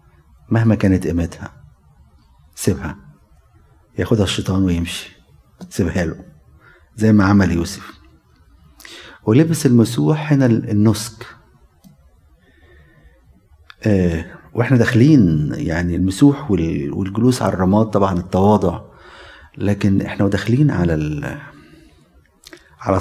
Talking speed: 85 wpm